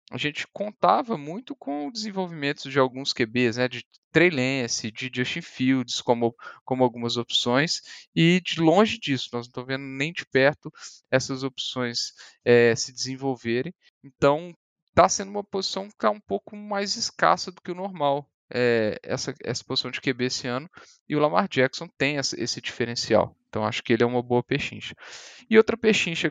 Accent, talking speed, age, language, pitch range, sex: Brazilian, 180 wpm, 10-29, Portuguese, 125-155 Hz, male